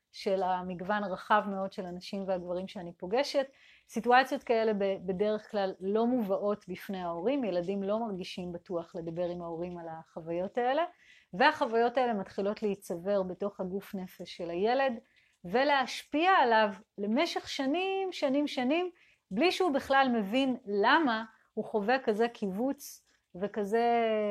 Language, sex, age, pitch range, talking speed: Hebrew, female, 30-49, 195-265 Hz, 130 wpm